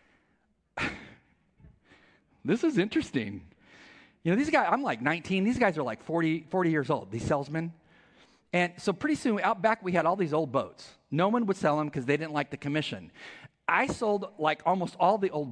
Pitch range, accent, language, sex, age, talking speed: 150-225 Hz, American, English, male, 40-59, 195 wpm